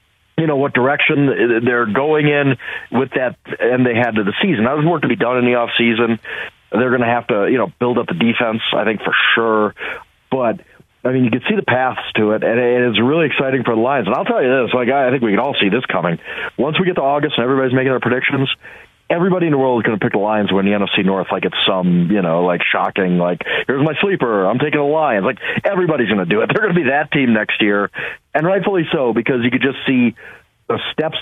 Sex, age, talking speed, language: male, 40-59, 260 wpm, English